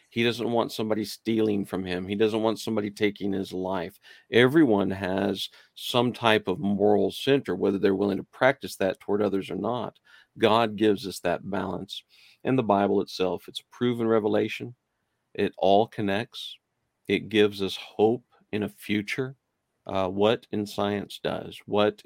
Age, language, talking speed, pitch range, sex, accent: 50-69, English, 165 wpm, 95-110 Hz, male, American